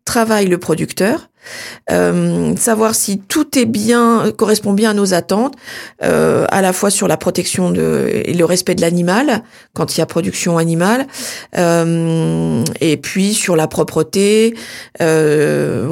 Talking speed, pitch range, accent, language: 150 wpm, 180-225 Hz, French, French